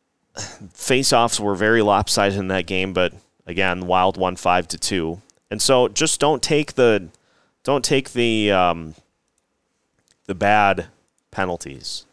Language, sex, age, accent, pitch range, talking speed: English, male, 30-49, American, 95-125 Hz, 145 wpm